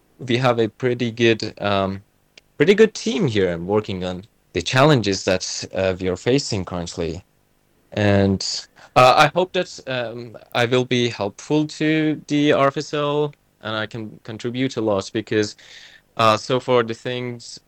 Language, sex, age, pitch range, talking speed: Swedish, male, 20-39, 100-120 Hz, 155 wpm